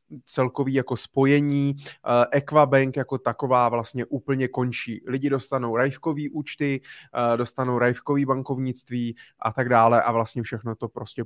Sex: male